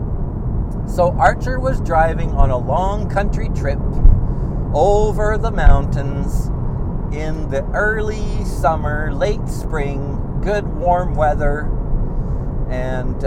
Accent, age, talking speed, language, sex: American, 50-69, 100 wpm, English, male